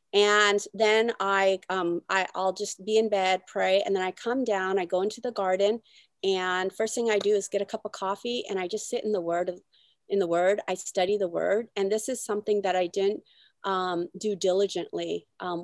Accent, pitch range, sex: American, 190-220 Hz, female